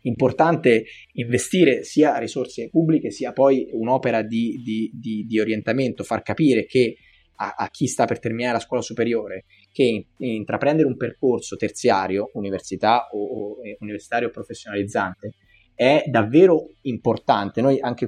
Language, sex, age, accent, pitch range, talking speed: Italian, male, 20-39, native, 105-130 Hz, 125 wpm